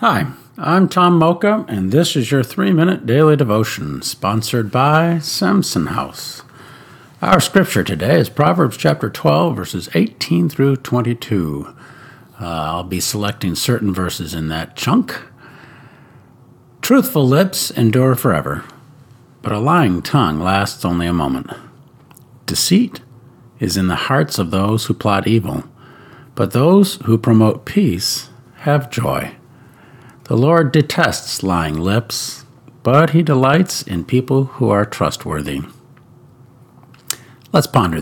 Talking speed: 125 wpm